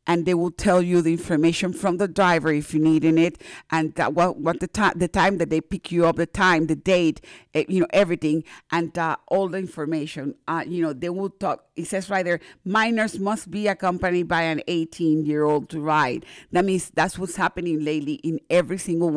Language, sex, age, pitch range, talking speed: English, female, 50-69, 160-190 Hz, 220 wpm